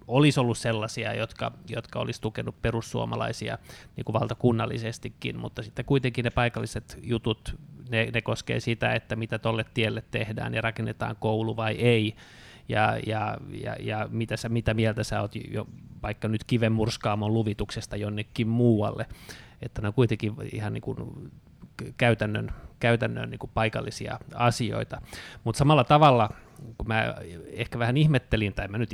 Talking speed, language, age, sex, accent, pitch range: 145 wpm, Finnish, 20-39, male, native, 110-125 Hz